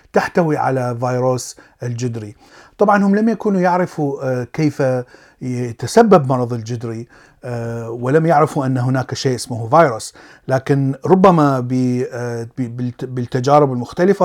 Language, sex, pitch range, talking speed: Arabic, male, 130-180 Hz, 100 wpm